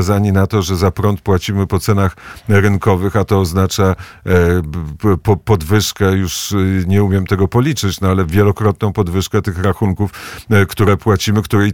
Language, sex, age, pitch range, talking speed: Polish, male, 50-69, 95-105 Hz, 150 wpm